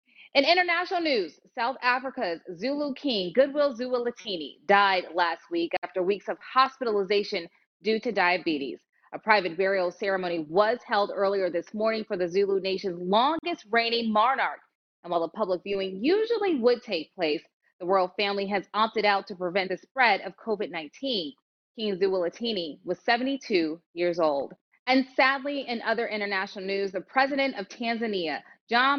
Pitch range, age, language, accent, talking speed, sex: 185-245 Hz, 30-49, English, American, 150 wpm, female